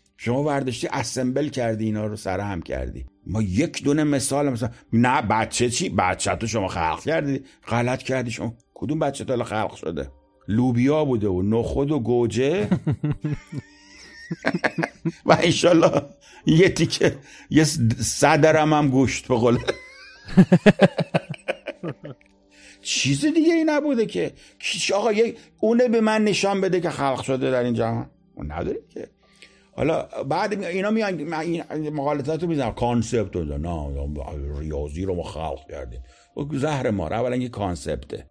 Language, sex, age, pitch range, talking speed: Persian, male, 60-79, 100-145 Hz, 135 wpm